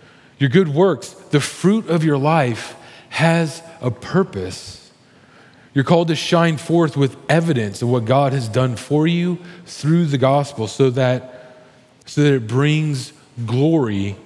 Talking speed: 145 wpm